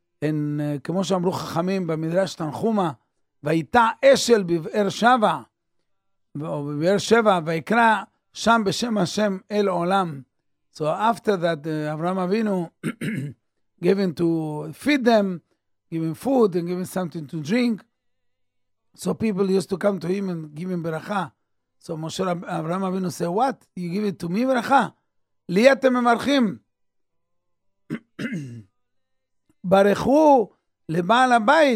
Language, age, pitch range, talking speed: English, 50-69, 155-225 Hz, 125 wpm